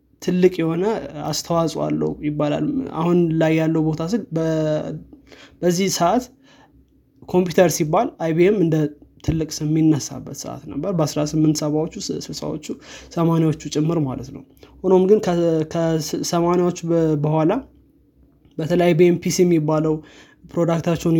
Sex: male